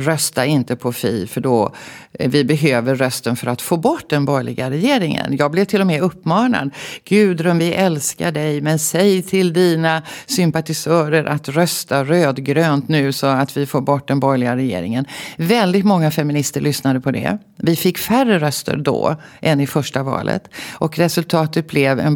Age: 50-69